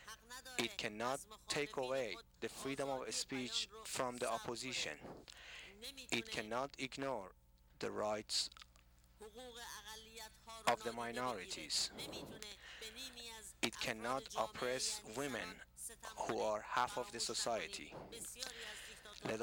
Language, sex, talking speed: English, male, 95 wpm